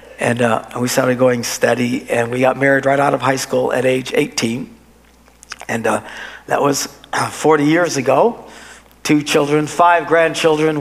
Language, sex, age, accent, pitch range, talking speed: English, male, 60-79, American, 135-175 Hz, 160 wpm